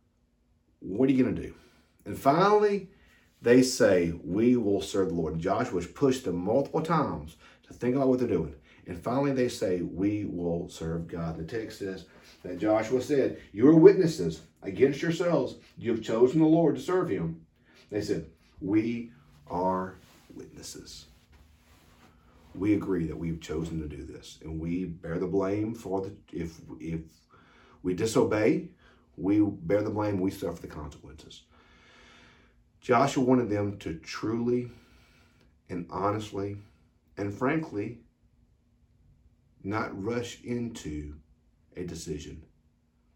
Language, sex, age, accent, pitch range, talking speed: English, male, 40-59, American, 80-115 Hz, 140 wpm